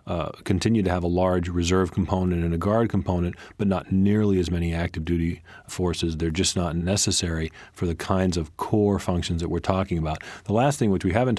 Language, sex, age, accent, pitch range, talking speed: English, male, 40-59, American, 90-100 Hz, 210 wpm